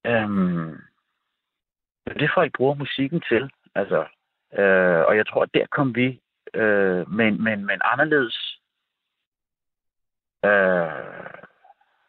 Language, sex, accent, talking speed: Danish, male, native, 120 wpm